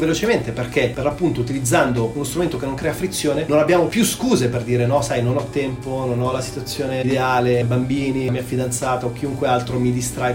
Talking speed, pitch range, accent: 205 wpm, 120-160 Hz, native